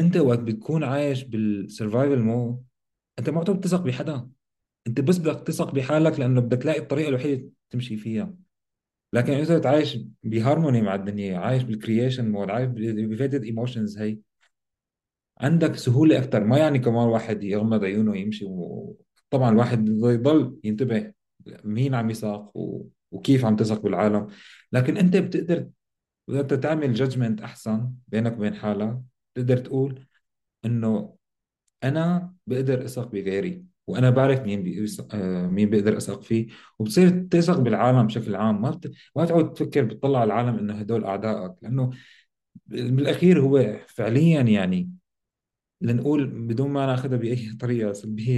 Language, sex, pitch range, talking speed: Arabic, male, 110-145 Hz, 135 wpm